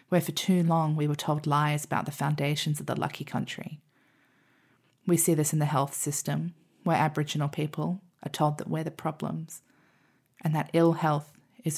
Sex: female